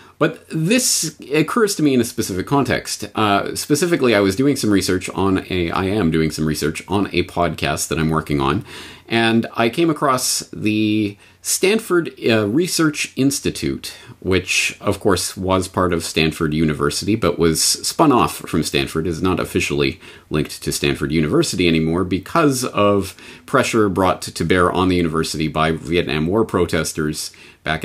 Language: English